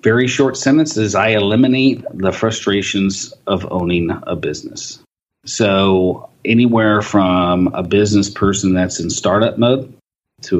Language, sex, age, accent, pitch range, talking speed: English, male, 40-59, American, 90-105 Hz, 130 wpm